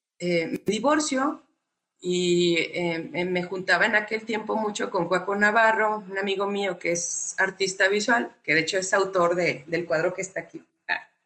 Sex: female